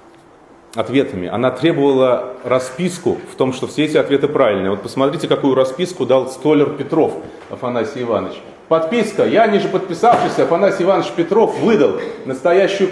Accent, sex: native, male